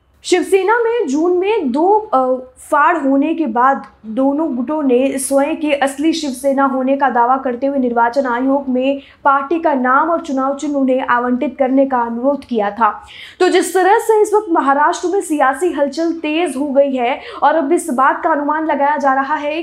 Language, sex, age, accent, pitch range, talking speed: Hindi, female, 20-39, native, 265-330 Hz, 185 wpm